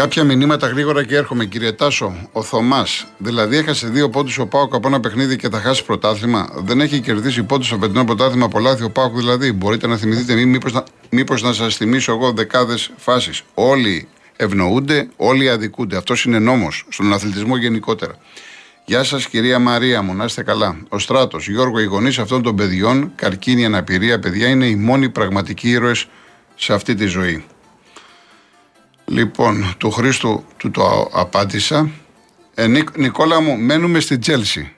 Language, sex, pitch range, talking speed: Greek, male, 110-140 Hz, 160 wpm